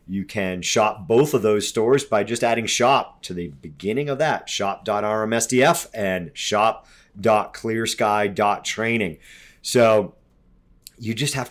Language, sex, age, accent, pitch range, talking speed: English, male, 40-59, American, 100-130 Hz, 120 wpm